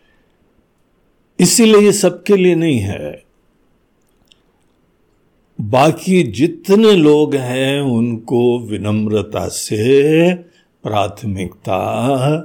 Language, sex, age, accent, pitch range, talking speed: Hindi, male, 60-79, native, 130-180 Hz, 65 wpm